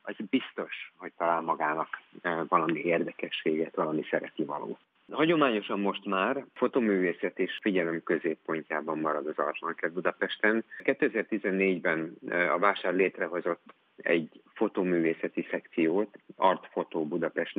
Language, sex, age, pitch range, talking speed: Hungarian, male, 50-69, 85-105 Hz, 110 wpm